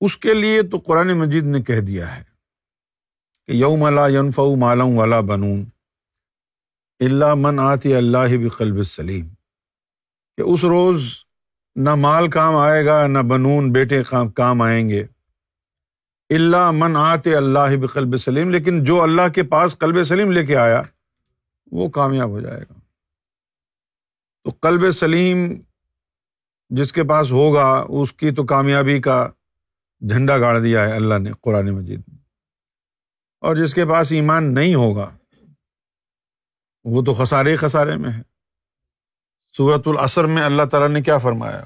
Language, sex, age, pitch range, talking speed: Urdu, male, 50-69, 105-155 Hz, 150 wpm